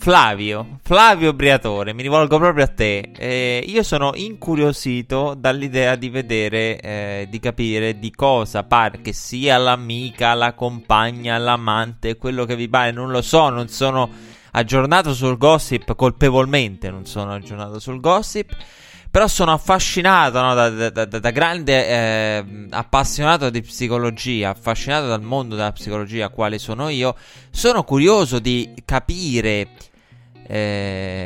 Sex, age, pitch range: male, 20-39, 105-130 Hz